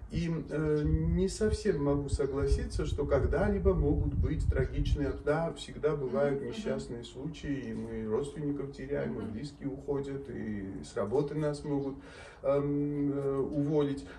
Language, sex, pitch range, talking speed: Russian, male, 140-185 Hz, 125 wpm